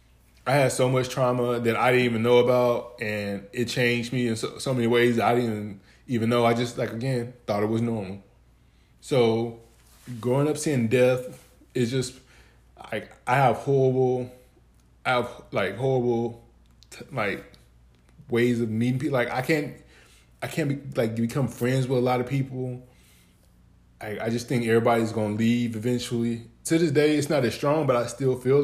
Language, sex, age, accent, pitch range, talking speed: English, male, 20-39, American, 110-130 Hz, 180 wpm